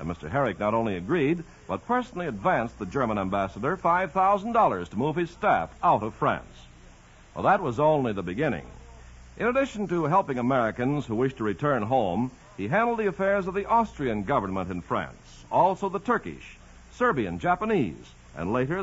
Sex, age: male, 60-79